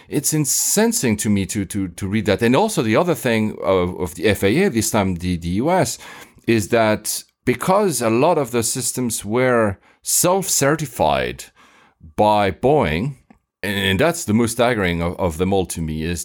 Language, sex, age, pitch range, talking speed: English, male, 40-59, 95-130 Hz, 175 wpm